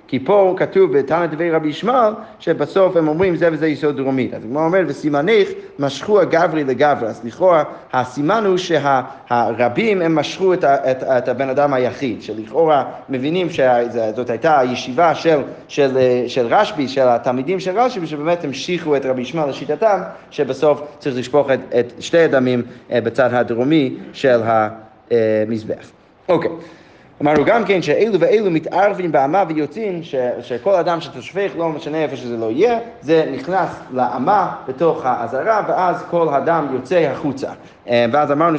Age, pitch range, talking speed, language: 30-49, 125-180 Hz, 145 wpm, Hebrew